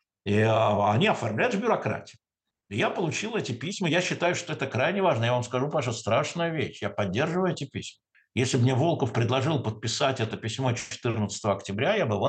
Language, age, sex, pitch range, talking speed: Russian, 60-79, male, 120-170 Hz, 190 wpm